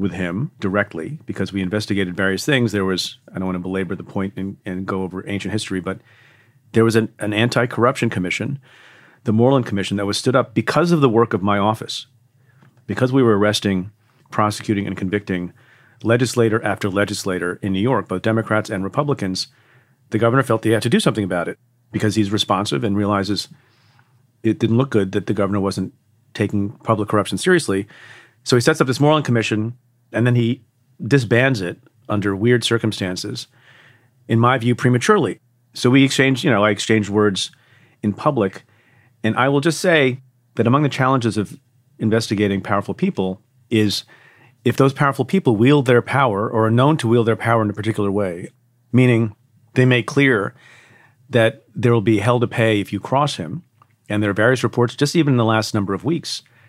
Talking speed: 185 wpm